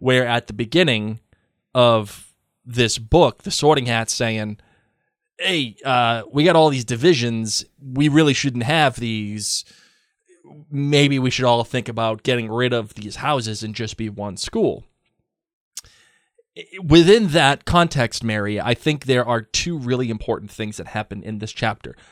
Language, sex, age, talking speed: English, male, 20-39, 150 wpm